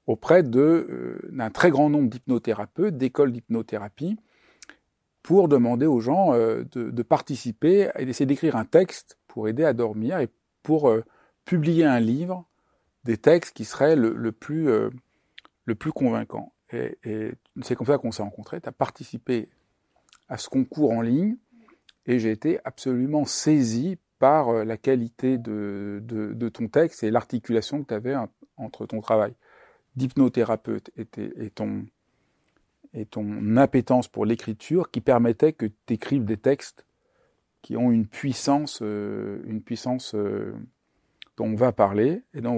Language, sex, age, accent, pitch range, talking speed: French, male, 50-69, French, 110-140 Hz, 160 wpm